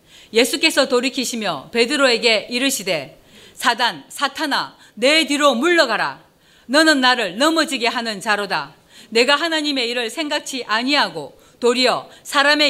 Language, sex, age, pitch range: Korean, female, 40-59, 235-295 Hz